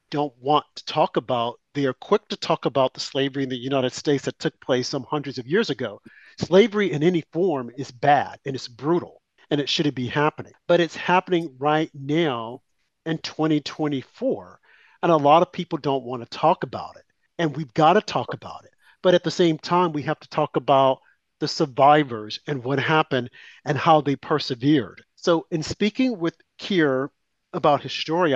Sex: male